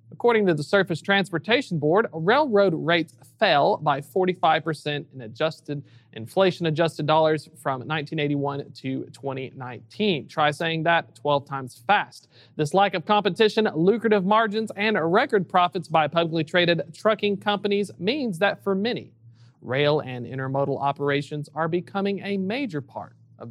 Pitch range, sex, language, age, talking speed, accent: 135-200 Hz, male, English, 40-59, 135 wpm, American